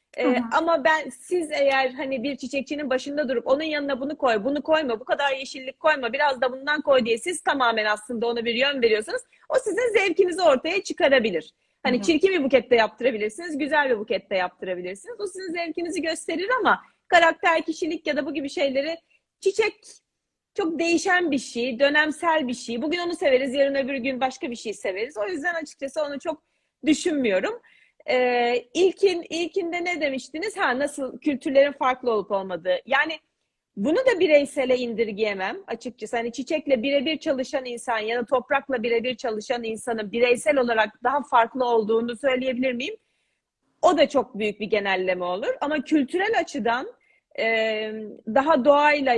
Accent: native